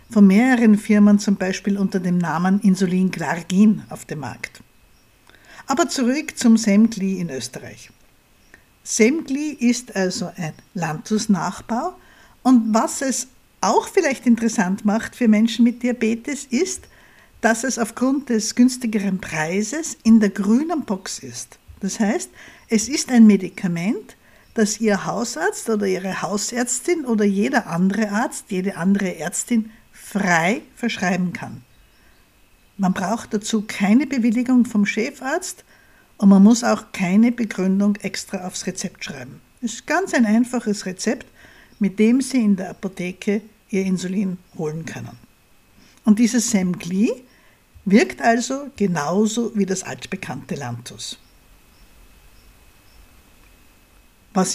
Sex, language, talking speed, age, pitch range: female, German, 125 wpm, 60-79, 190-240 Hz